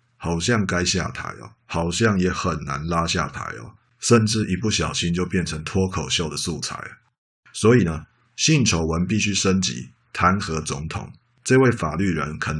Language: Chinese